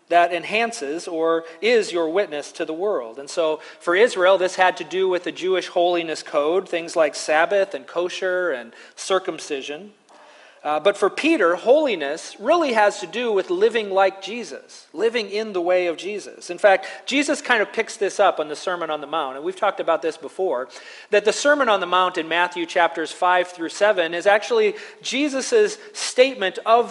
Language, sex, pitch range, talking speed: English, male, 170-220 Hz, 190 wpm